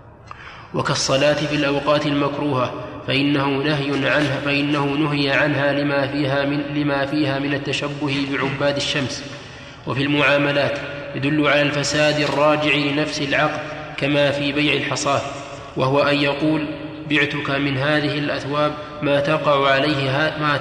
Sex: male